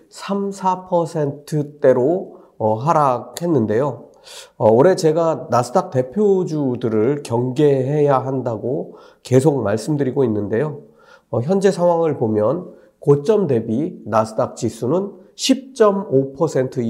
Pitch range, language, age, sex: 130-200 Hz, Korean, 40-59, male